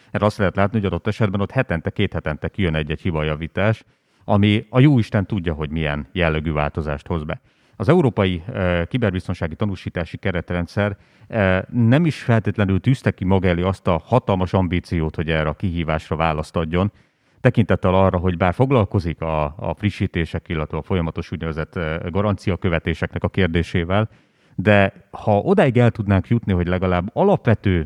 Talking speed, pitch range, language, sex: 155 wpm, 85-105 Hz, Hungarian, male